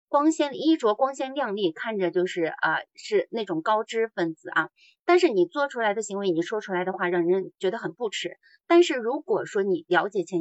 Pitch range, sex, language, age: 185-295 Hz, female, Chinese, 30-49